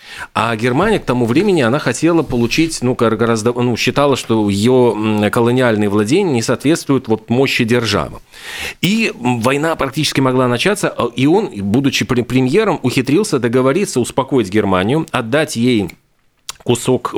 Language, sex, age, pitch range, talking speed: Russian, male, 40-59, 110-140 Hz, 130 wpm